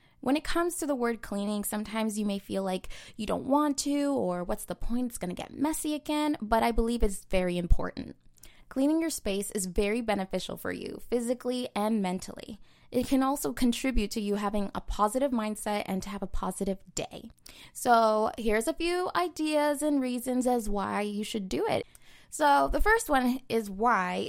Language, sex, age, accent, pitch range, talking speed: English, female, 20-39, American, 180-245 Hz, 195 wpm